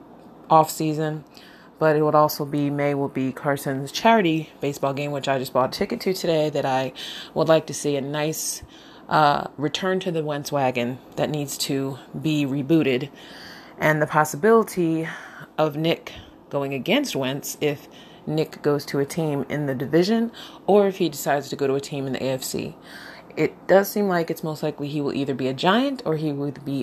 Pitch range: 135-160 Hz